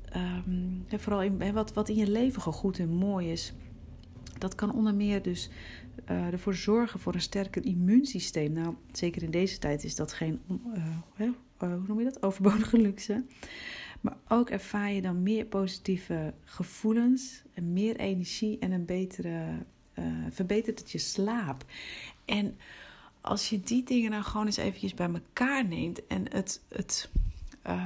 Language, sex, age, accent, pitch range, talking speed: Dutch, female, 40-59, Dutch, 170-210 Hz, 155 wpm